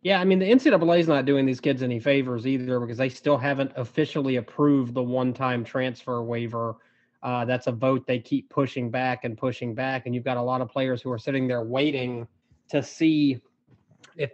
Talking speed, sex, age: 205 wpm, male, 20-39